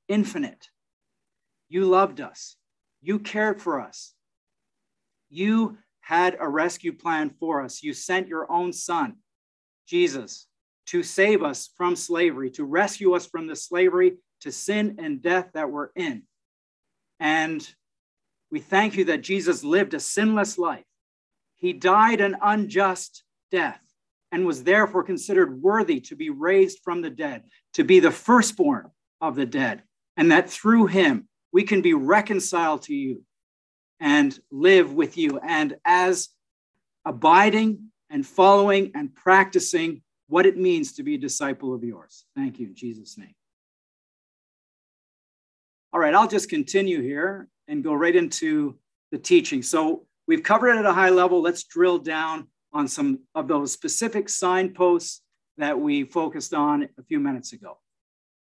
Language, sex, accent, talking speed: English, male, American, 150 wpm